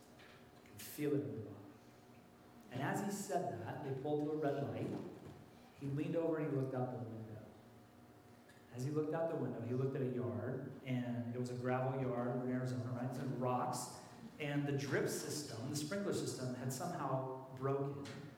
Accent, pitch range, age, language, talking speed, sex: American, 125-190 Hz, 40-59, English, 190 wpm, male